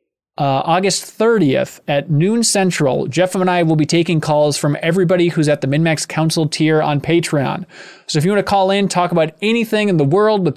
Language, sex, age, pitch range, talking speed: English, male, 20-39, 150-185 Hz, 210 wpm